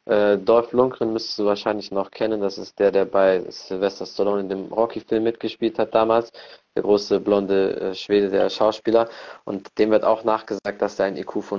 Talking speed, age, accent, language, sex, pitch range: 190 wpm, 20-39, German, German, male, 95-105 Hz